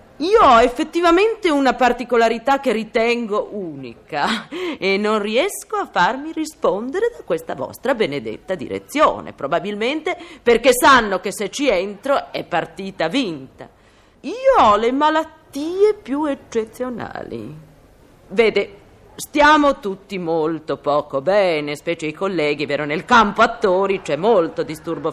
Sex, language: female, Italian